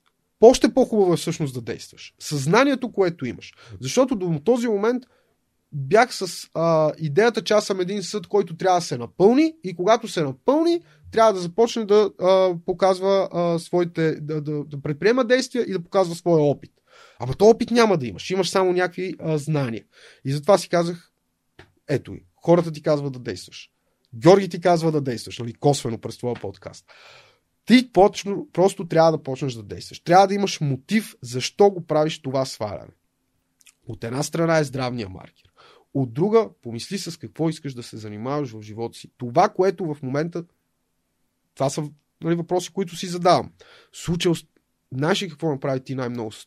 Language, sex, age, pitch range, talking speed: Bulgarian, male, 30-49, 130-195 Hz, 175 wpm